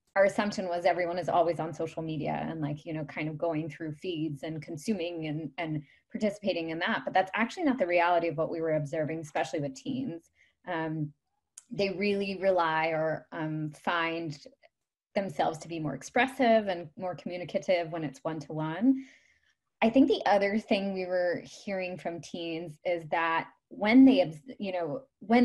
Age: 20-39